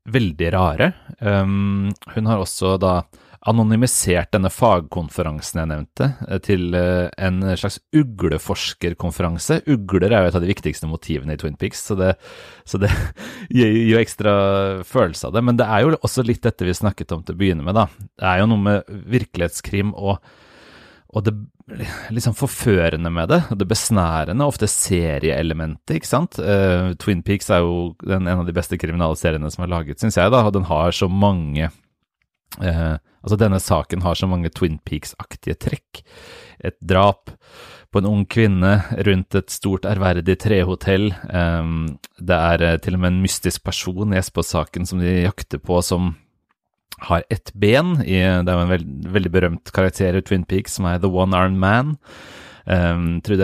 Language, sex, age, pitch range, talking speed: English, male, 30-49, 85-105 Hz, 170 wpm